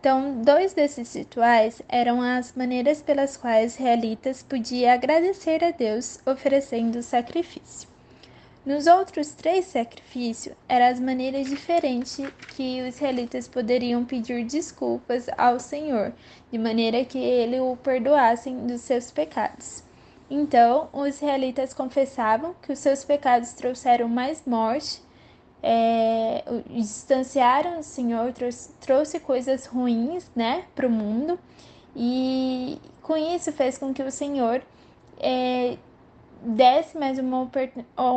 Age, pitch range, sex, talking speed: 10-29, 240-280 Hz, female, 115 wpm